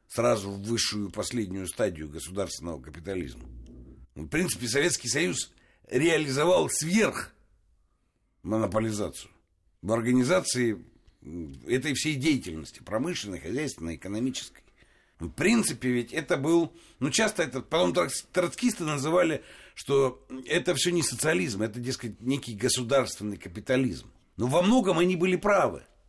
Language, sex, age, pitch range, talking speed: Russian, male, 60-79, 105-170 Hz, 110 wpm